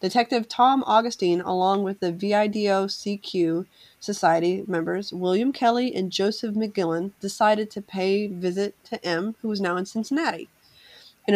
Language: English